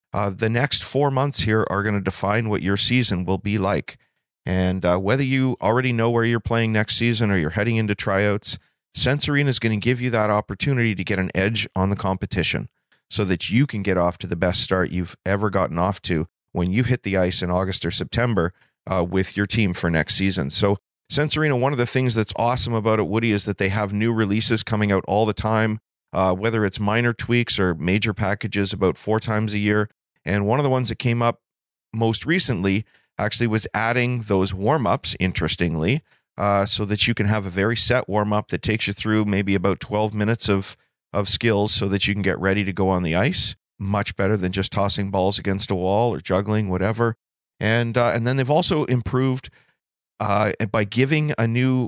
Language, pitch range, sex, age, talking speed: English, 95-115 Hz, male, 40-59, 215 wpm